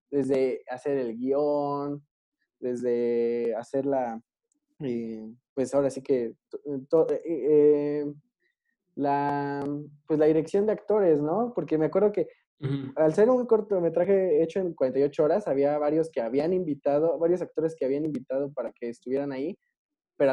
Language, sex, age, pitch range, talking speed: Spanish, male, 20-39, 135-185 Hz, 150 wpm